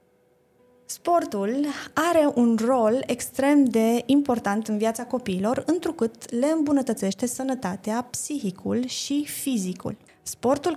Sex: female